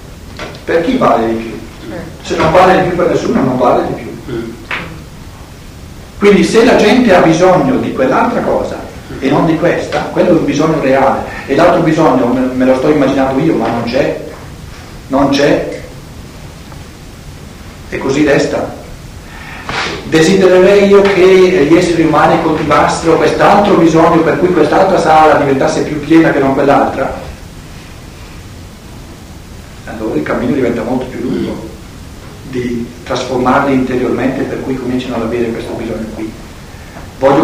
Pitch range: 120-165 Hz